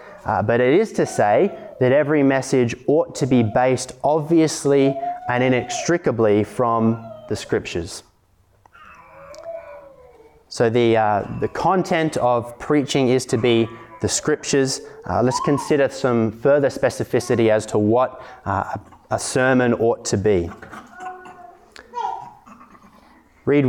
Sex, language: male, English